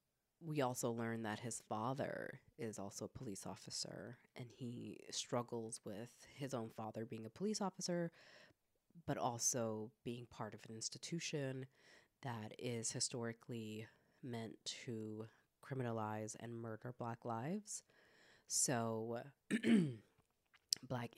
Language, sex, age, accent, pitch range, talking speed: English, female, 30-49, American, 115-140 Hz, 115 wpm